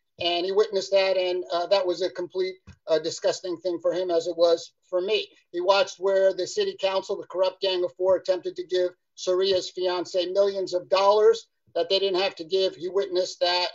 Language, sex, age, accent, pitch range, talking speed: English, male, 50-69, American, 180-210 Hz, 210 wpm